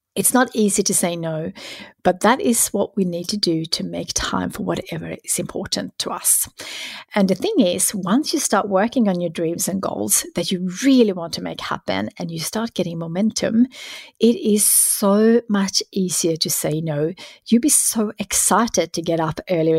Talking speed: 195 wpm